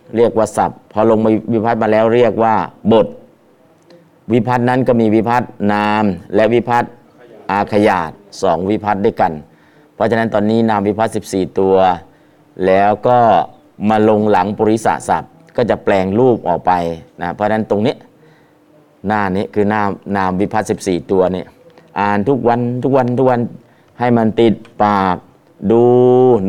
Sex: male